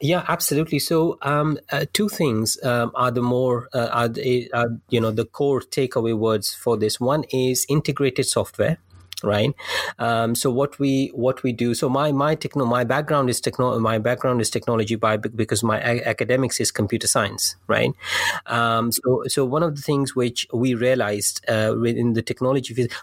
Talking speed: 180 wpm